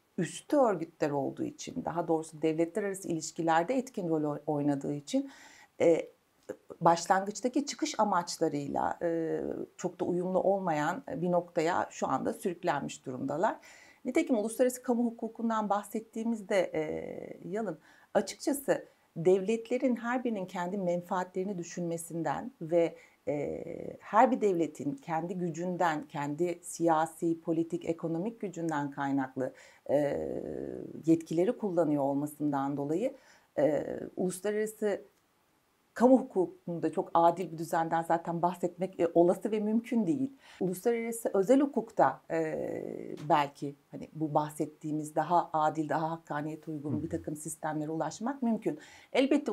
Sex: female